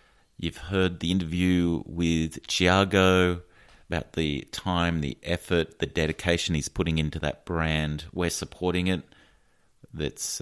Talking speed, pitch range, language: 125 wpm, 75-90 Hz, English